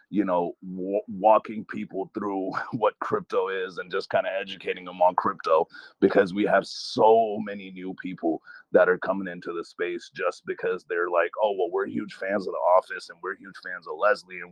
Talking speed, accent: 200 wpm, American